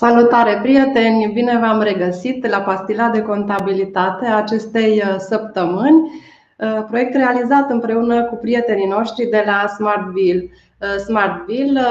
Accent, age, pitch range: native, 20-39, 205-235 Hz